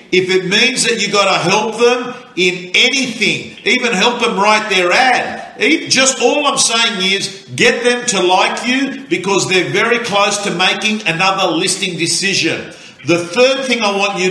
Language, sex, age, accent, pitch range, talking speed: English, male, 50-69, Australian, 190-245 Hz, 175 wpm